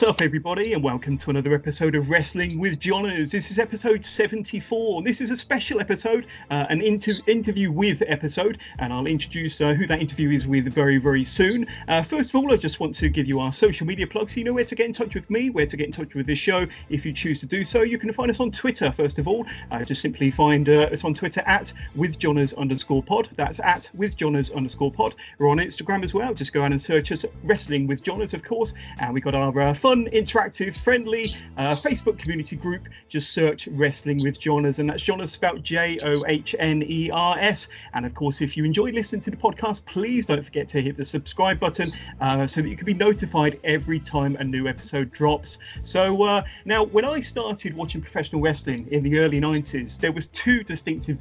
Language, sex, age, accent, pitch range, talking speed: English, male, 40-59, British, 145-210 Hz, 220 wpm